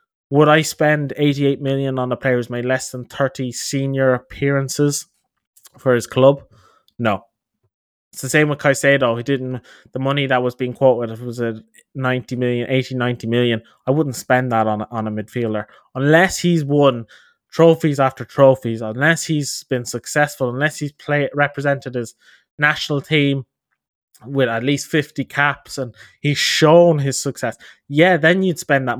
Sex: male